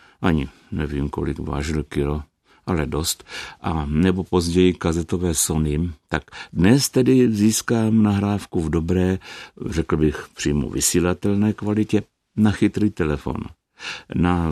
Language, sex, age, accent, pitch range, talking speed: Czech, male, 60-79, native, 75-90 Hz, 115 wpm